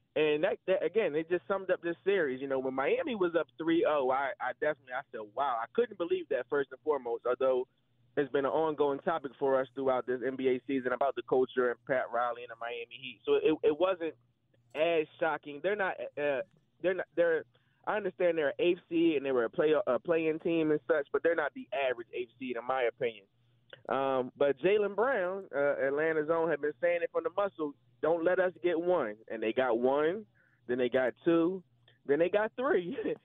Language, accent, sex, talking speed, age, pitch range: English, American, male, 215 wpm, 20-39, 135-195 Hz